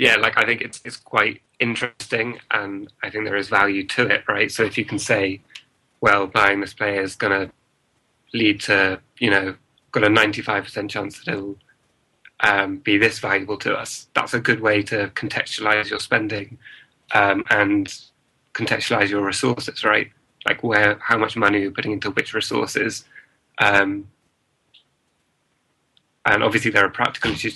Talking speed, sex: 165 wpm, male